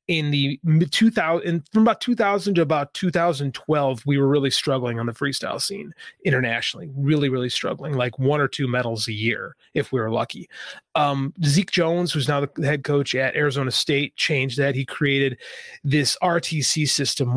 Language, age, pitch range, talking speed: English, 30-49, 130-160 Hz, 175 wpm